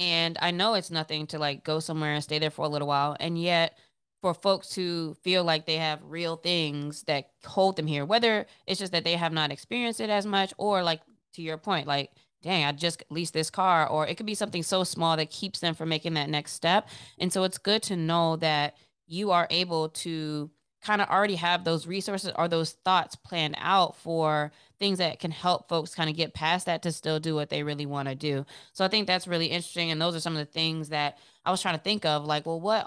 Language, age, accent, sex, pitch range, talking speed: English, 20-39, American, female, 155-185 Hz, 245 wpm